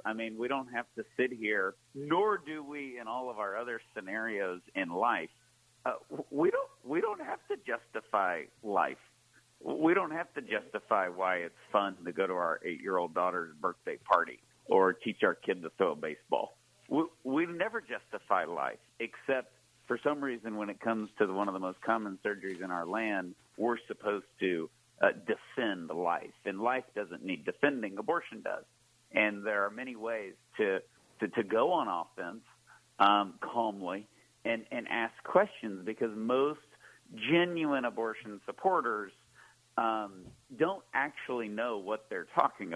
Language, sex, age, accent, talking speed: English, male, 50-69, American, 165 wpm